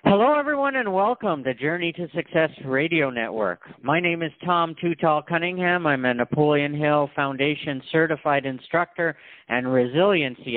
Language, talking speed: English, 140 wpm